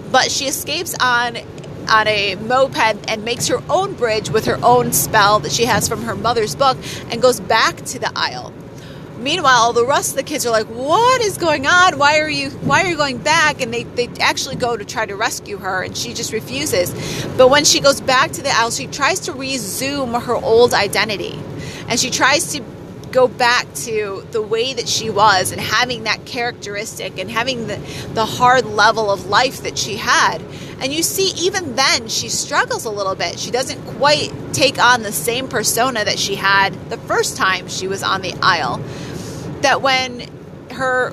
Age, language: 30-49, English